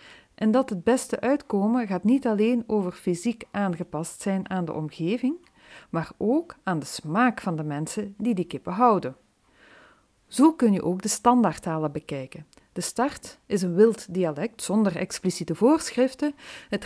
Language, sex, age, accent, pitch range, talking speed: Dutch, female, 40-59, Dutch, 175-240 Hz, 155 wpm